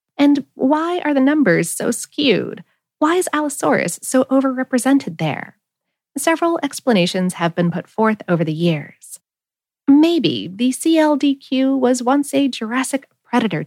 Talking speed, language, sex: 130 wpm, English, female